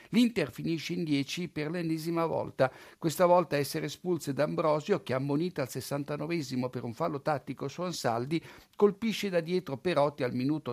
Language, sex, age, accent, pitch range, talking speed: Italian, male, 50-69, native, 130-170 Hz, 155 wpm